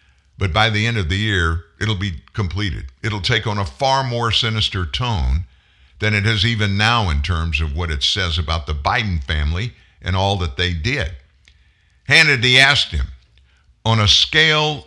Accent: American